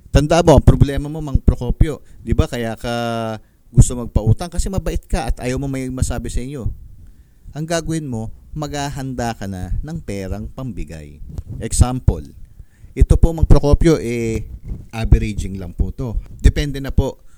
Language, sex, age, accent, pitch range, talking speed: English, male, 50-69, Filipino, 95-140 Hz, 150 wpm